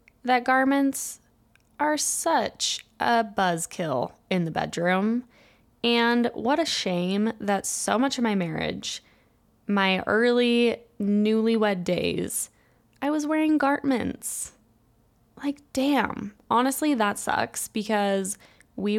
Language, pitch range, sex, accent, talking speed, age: English, 190-245 Hz, female, American, 105 wpm, 10-29